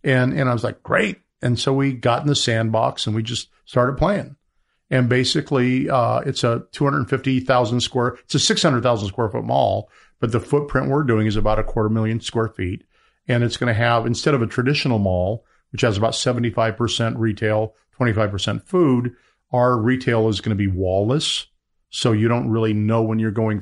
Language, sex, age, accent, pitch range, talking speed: English, male, 50-69, American, 110-130 Hz, 215 wpm